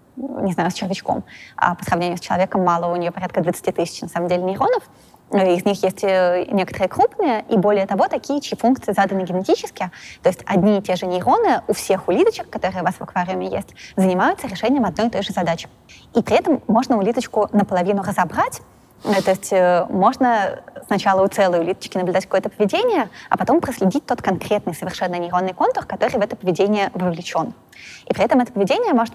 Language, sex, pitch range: Russian, female, 185-220 Hz